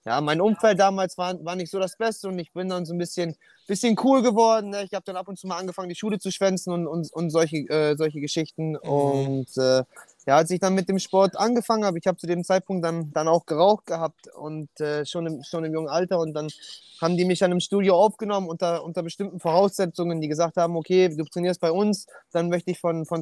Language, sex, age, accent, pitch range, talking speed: German, male, 20-39, German, 155-185 Hz, 240 wpm